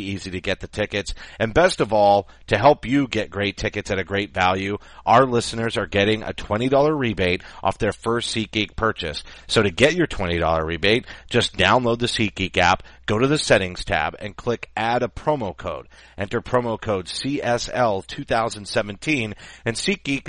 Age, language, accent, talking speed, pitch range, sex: 40-59, English, American, 175 wpm, 95-120 Hz, male